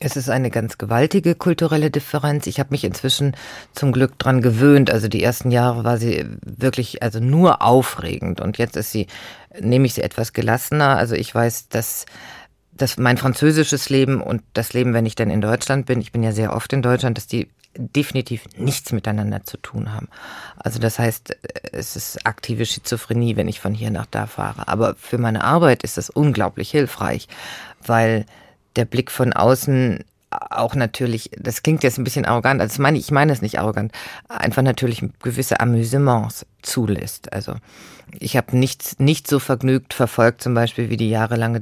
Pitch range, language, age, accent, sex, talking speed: 110-130 Hz, German, 40-59, German, female, 185 wpm